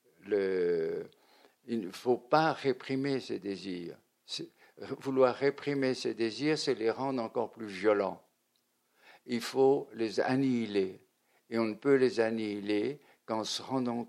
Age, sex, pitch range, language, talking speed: 60-79, male, 110-135 Hz, French, 135 wpm